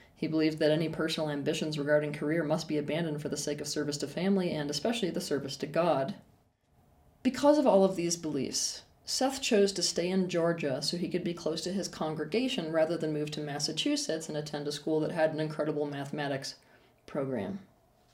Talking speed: 195 wpm